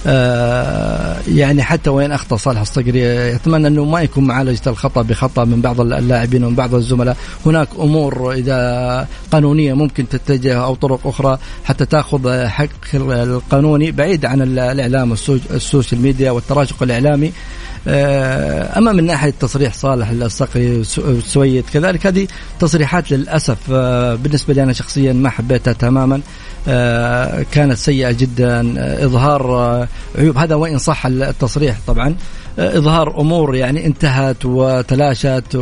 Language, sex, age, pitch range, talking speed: Arabic, male, 50-69, 125-150 Hz, 120 wpm